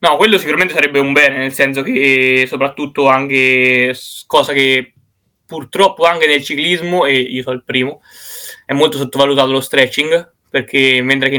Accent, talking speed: native, 160 wpm